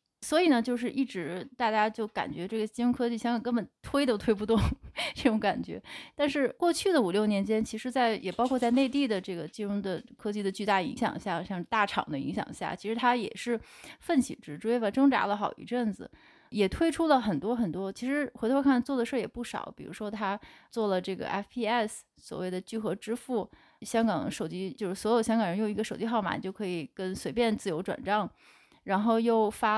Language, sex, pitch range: Chinese, female, 200-255 Hz